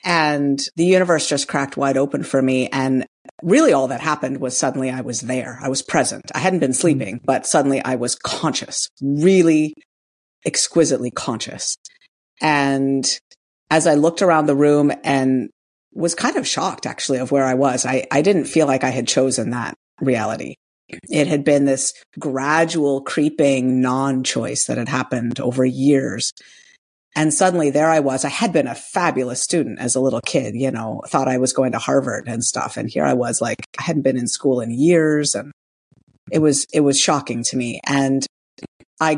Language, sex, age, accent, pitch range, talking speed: English, female, 50-69, American, 130-150 Hz, 185 wpm